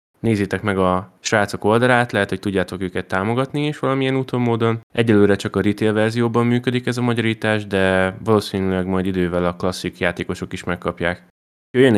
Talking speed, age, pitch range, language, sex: 165 wpm, 20-39, 95-110 Hz, Hungarian, male